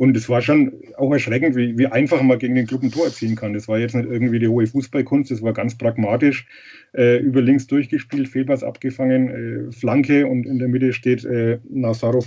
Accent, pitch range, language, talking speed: German, 120-140 Hz, German, 215 wpm